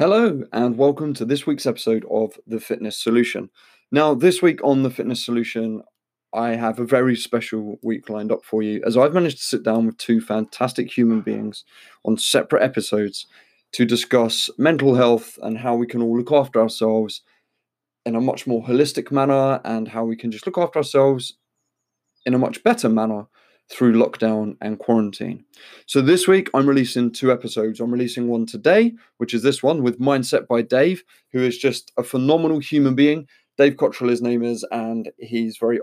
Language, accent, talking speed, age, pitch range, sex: English, British, 185 wpm, 20-39, 115-135 Hz, male